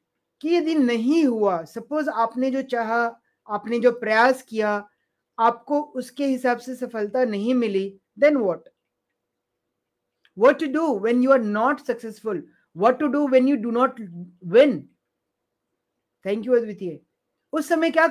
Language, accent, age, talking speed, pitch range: Hindi, native, 30-49, 140 wpm, 225-265 Hz